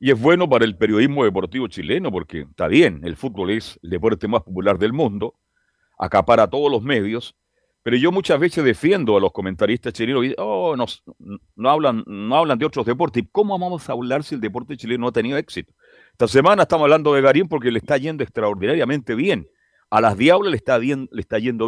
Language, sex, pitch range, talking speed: Spanish, male, 120-195 Hz, 220 wpm